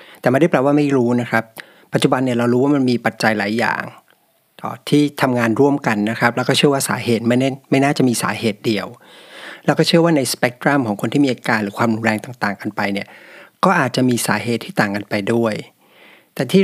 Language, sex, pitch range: Thai, male, 110-135 Hz